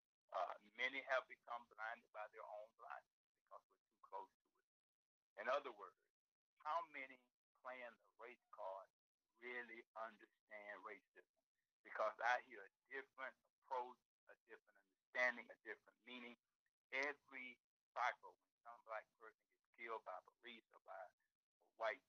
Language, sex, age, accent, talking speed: English, male, 60-79, American, 140 wpm